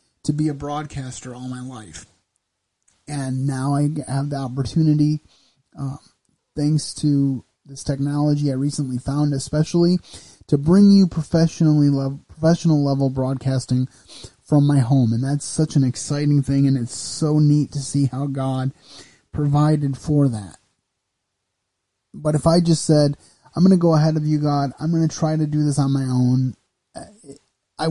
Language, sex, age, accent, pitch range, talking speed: English, male, 30-49, American, 130-150 Hz, 160 wpm